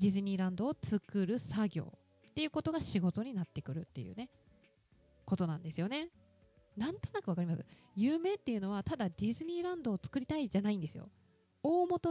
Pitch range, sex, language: 175-265 Hz, female, Japanese